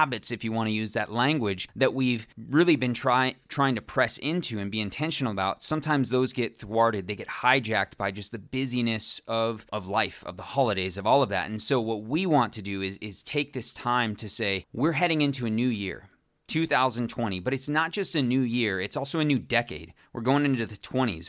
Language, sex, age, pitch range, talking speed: English, male, 20-39, 105-135 Hz, 220 wpm